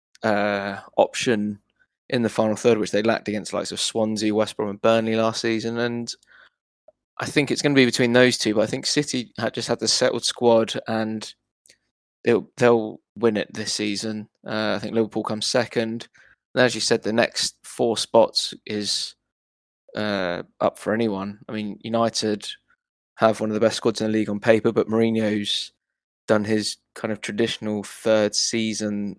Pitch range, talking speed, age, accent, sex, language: 105-115 Hz, 185 wpm, 20-39, British, male, English